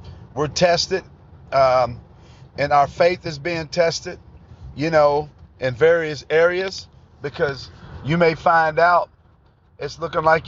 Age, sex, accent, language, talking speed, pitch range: 50-69, male, American, English, 125 wpm, 120-165 Hz